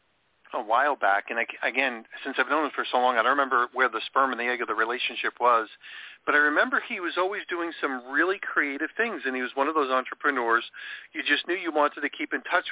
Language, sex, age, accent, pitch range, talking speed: English, male, 40-59, American, 130-155 Hz, 245 wpm